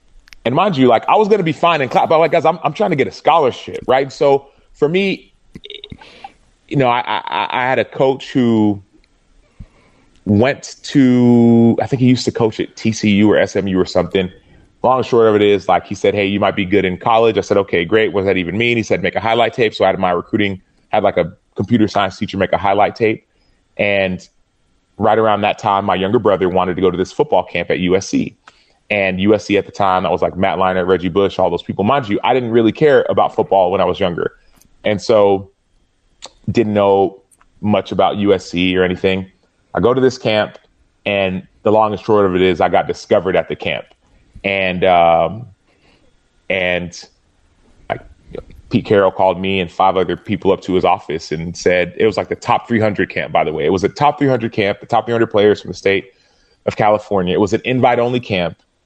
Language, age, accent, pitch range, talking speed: English, 30-49, American, 95-120 Hz, 220 wpm